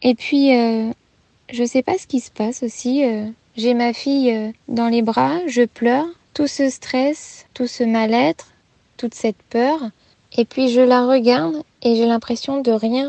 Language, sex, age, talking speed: French, female, 20-39, 185 wpm